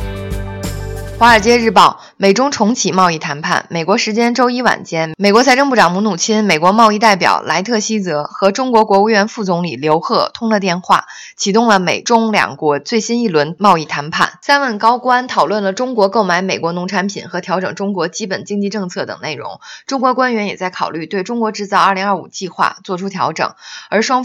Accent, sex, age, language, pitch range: native, female, 20-39, Chinese, 160-220 Hz